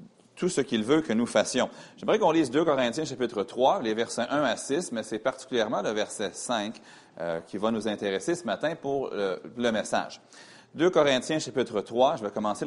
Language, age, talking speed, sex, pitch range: French, 40-59, 205 wpm, male, 105-135 Hz